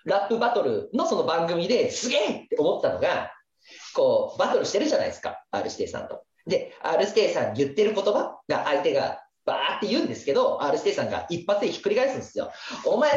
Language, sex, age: Japanese, male, 40-59